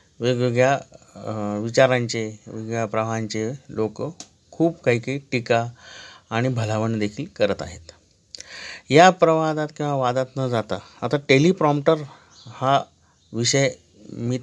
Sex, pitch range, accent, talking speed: male, 115-145 Hz, native, 95 wpm